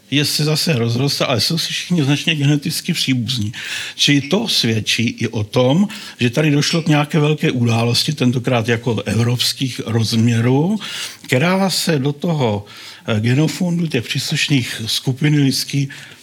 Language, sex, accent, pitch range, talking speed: Czech, male, native, 115-155 Hz, 135 wpm